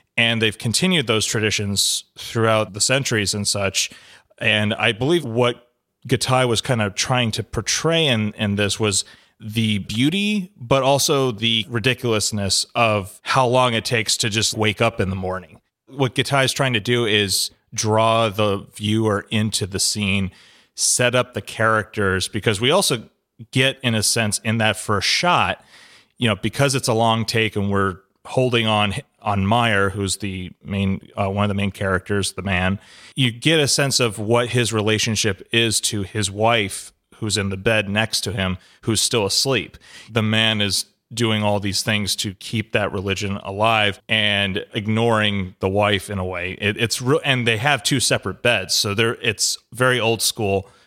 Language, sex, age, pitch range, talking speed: English, male, 30-49, 100-120 Hz, 175 wpm